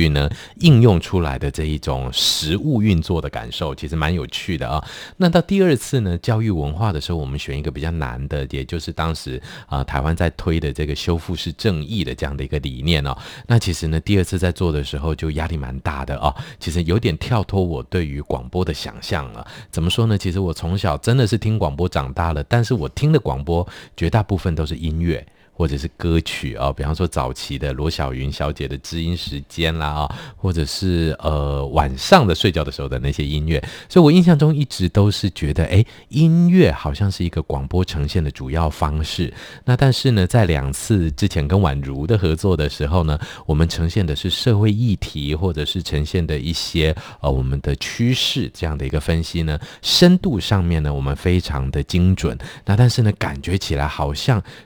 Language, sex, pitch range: Chinese, male, 75-100 Hz